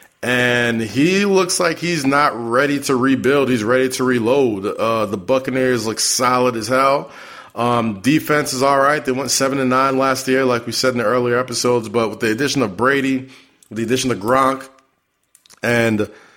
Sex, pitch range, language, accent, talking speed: male, 110-135 Hz, English, American, 175 wpm